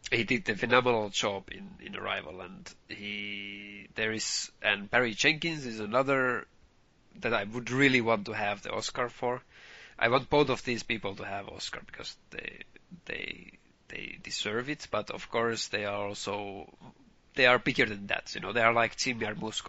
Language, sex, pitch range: English, male, 100-130 Hz